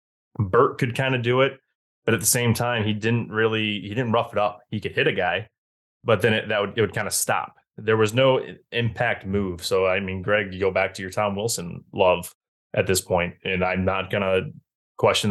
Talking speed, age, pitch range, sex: 235 wpm, 20-39, 95-125 Hz, male